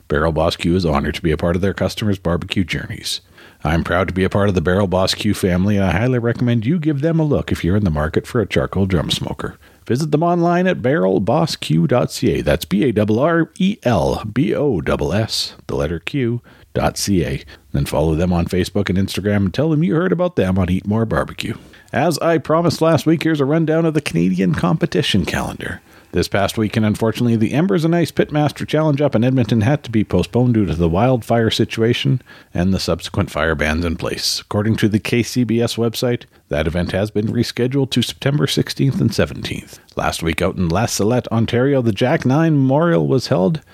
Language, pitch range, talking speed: English, 95-145 Hz, 200 wpm